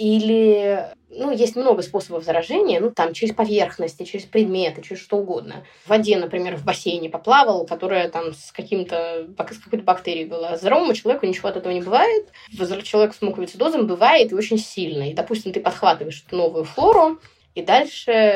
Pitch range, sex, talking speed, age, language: 170-220 Hz, female, 170 wpm, 20-39, Russian